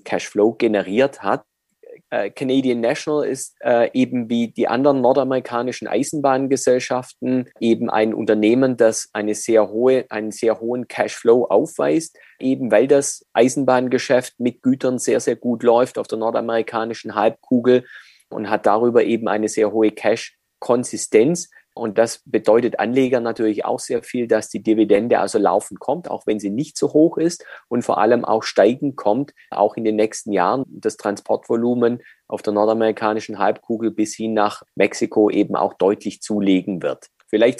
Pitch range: 110-130 Hz